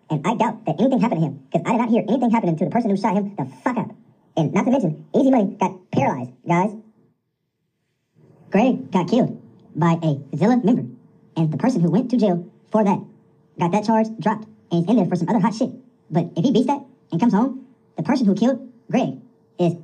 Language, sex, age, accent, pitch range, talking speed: English, male, 40-59, American, 175-230 Hz, 230 wpm